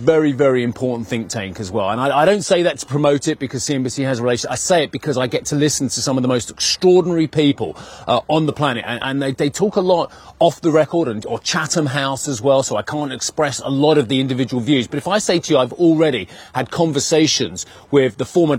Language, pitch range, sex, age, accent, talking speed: English, 120-145 Hz, male, 30-49, British, 255 wpm